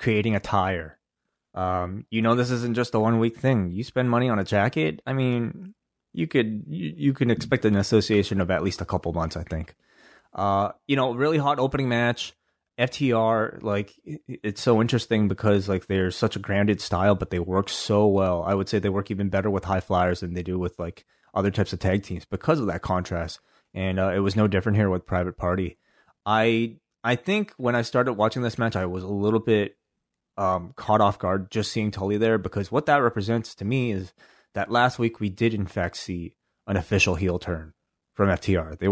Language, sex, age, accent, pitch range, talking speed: English, male, 20-39, American, 95-115 Hz, 215 wpm